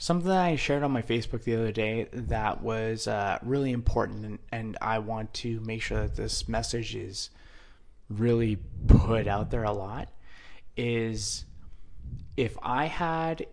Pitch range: 105-130 Hz